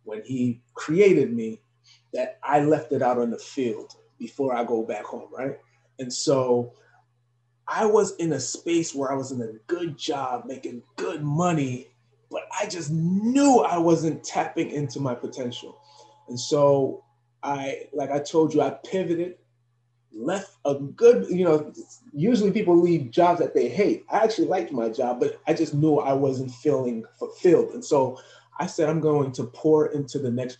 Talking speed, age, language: 175 wpm, 20-39, English